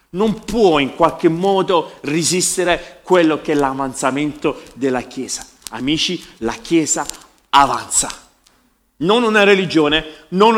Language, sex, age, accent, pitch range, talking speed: Italian, male, 40-59, native, 135-190 Hz, 115 wpm